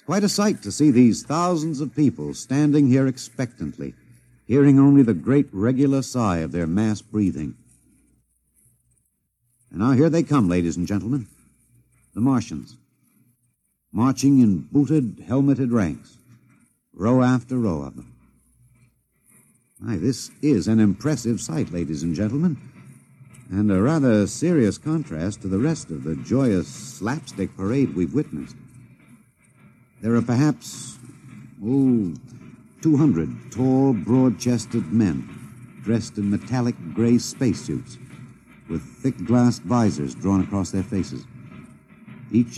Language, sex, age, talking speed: English, male, 60-79, 125 wpm